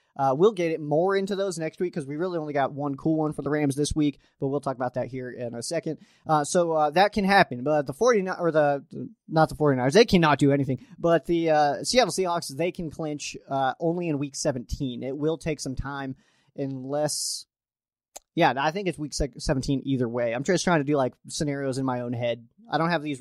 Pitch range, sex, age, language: 140-170 Hz, male, 30-49, English